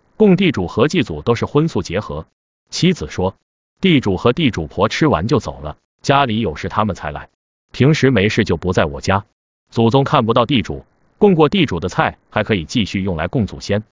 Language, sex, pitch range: Chinese, male, 95-135 Hz